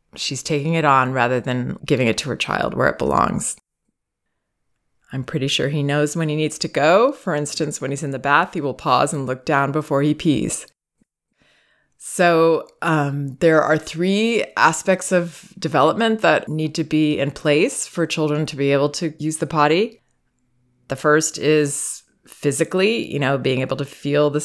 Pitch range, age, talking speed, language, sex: 140-165 Hz, 20-39, 180 wpm, English, female